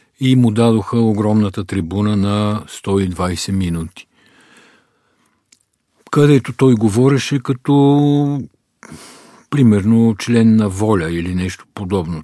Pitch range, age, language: 90-115 Hz, 50-69, Bulgarian